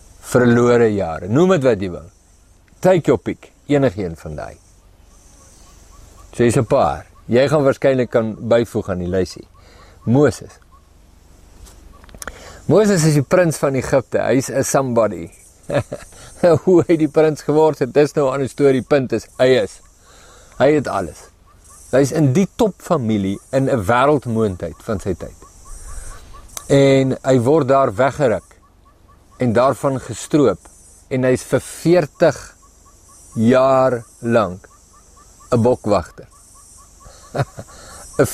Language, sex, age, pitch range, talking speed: English, male, 50-69, 95-145 Hz, 130 wpm